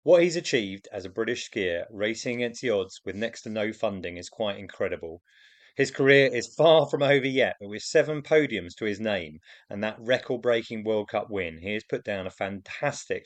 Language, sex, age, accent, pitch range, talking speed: English, male, 30-49, British, 105-140 Hz, 205 wpm